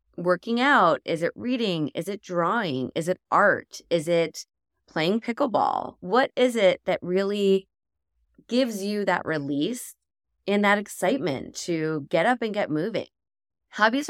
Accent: American